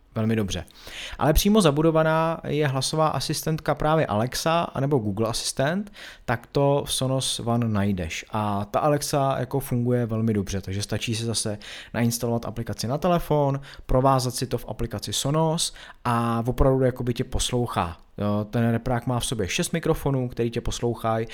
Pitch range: 105-130 Hz